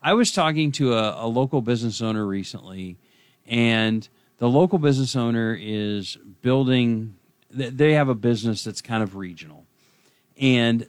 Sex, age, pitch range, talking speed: male, 40-59, 110-140 Hz, 145 wpm